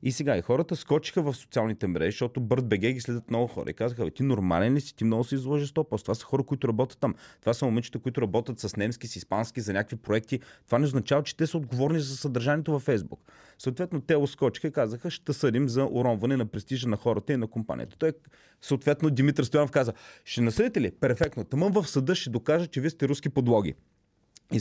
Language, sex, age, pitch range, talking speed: Bulgarian, male, 30-49, 110-145 Hz, 220 wpm